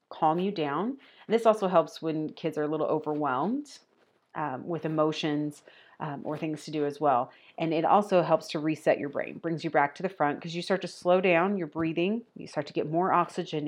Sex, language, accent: female, English, American